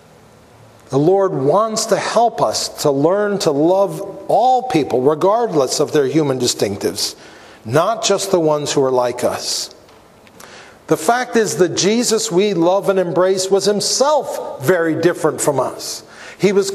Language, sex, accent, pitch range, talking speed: English, male, American, 145-220 Hz, 150 wpm